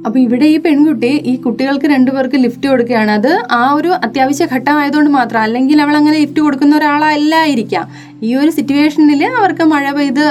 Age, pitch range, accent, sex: 20-39, 235-295 Hz, native, female